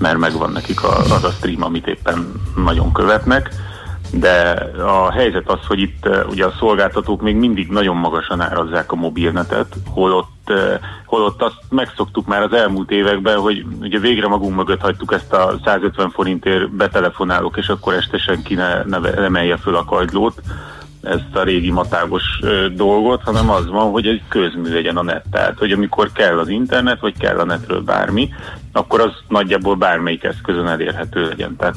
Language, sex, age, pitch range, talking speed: Hungarian, male, 30-49, 85-100 Hz, 165 wpm